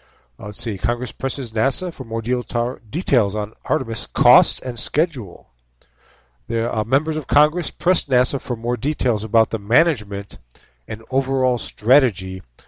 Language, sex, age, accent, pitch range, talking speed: English, male, 50-69, American, 100-130 Hz, 145 wpm